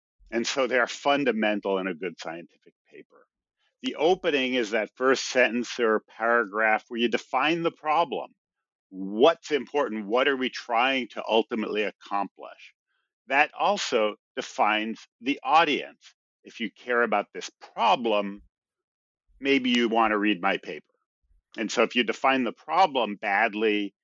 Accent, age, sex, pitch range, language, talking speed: American, 50-69, male, 105-135 Hz, English, 145 wpm